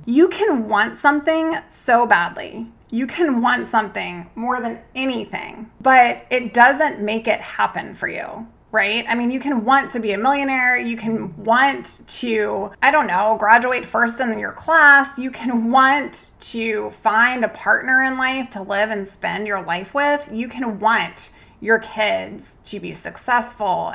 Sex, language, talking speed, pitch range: female, English, 170 wpm, 210-255 Hz